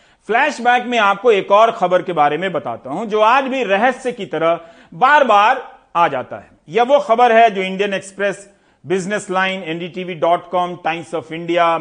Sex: male